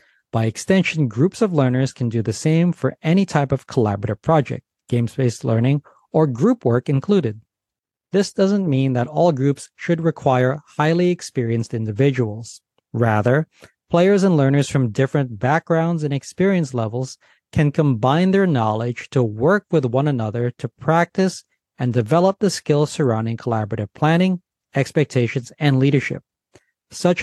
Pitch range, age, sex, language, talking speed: 125-165 Hz, 40-59, male, English, 140 wpm